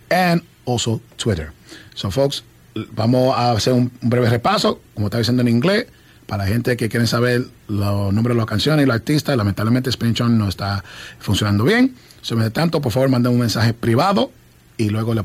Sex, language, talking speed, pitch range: male, English, 195 wpm, 110-145 Hz